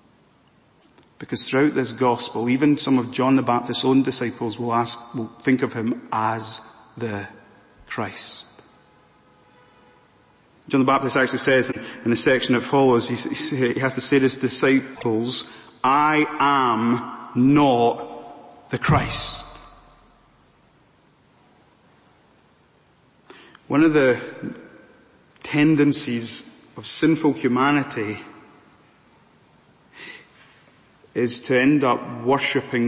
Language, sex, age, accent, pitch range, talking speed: English, male, 30-49, British, 120-140 Hz, 100 wpm